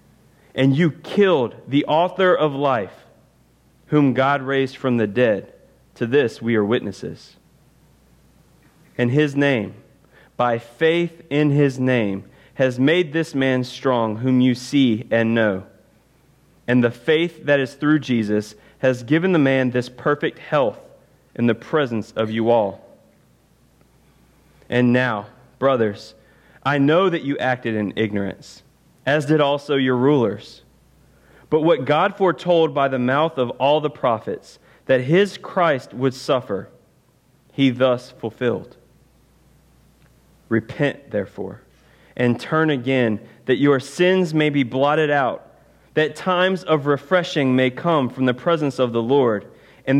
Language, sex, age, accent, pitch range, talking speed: English, male, 30-49, American, 120-150 Hz, 140 wpm